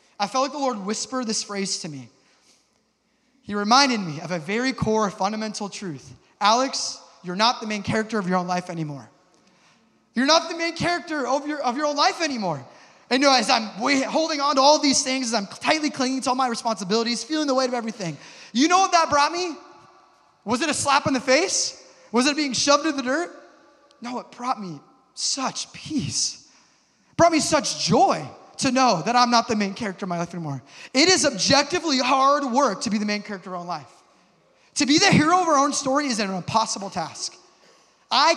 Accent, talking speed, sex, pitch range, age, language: American, 215 wpm, male, 195-280 Hz, 20-39, English